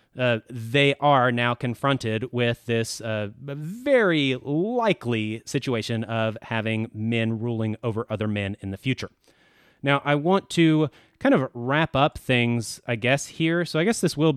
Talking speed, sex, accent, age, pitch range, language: 155 wpm, male, American, 30-49, 115-140 Hz, English